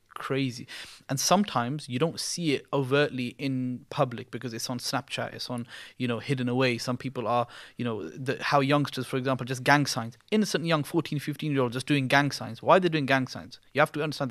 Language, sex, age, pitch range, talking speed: English, male, 30-49, 125-140 Hz, 220 wpm